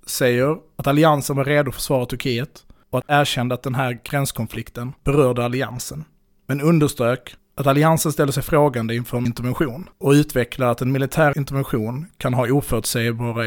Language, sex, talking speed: Swedish, male, 160 wpm